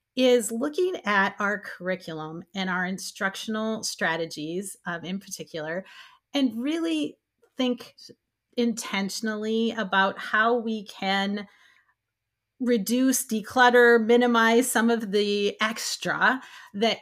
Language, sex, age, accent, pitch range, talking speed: English, female, 30-49, American, 190-245 Hz, 100 wpm